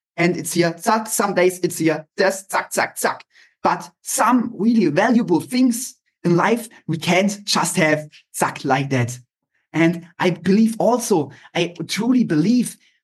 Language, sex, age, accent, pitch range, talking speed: English, male, 20-39, German, 170-210 Hz, 150 wpm